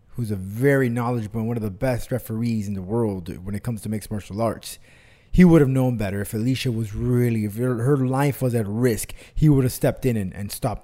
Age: 30-49